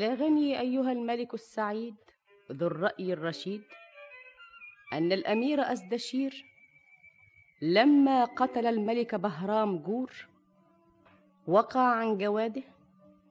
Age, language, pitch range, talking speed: 30-49, Arabic, 180-250 Hz, 85 wpm